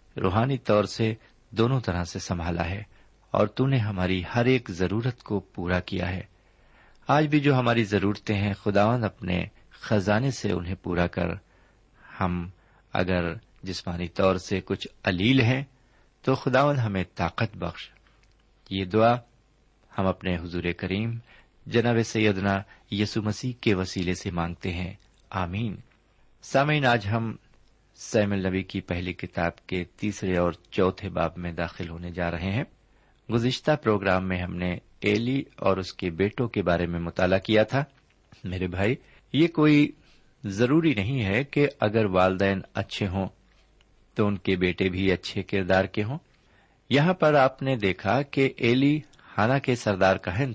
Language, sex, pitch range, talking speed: Urdu, male, 95-120 Hz, 155 wpm